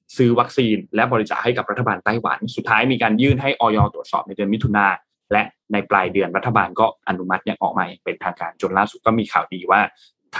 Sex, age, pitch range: male, 20-39, 100-135 Hz